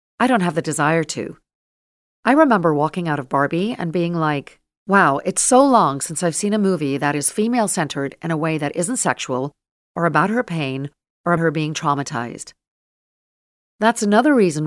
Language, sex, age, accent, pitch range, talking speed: English, female, 50-69, American, 145-185 Hz, 180 wpm